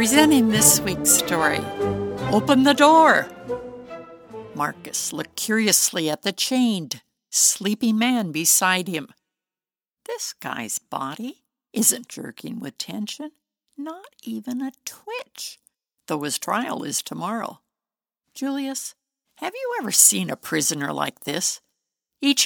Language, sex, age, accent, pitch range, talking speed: English, female, 60-79, American, 200-275 Hz, 115 wpm